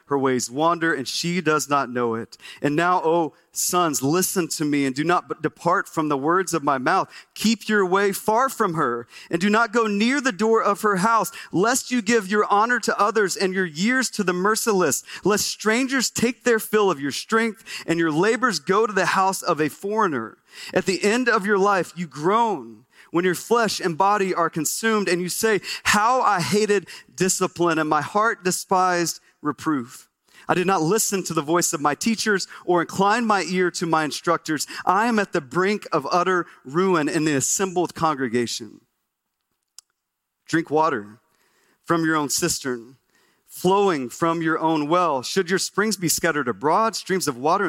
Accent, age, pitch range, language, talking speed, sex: American, 30-49, 160-215 Hz, English, 190 wpm, male